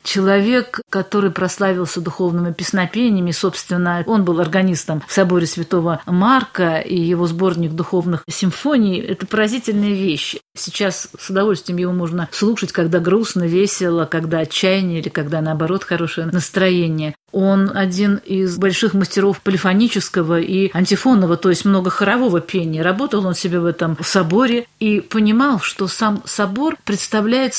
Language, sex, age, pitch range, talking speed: Russian, female, 50-69, 170-205 Hz, 135 wpm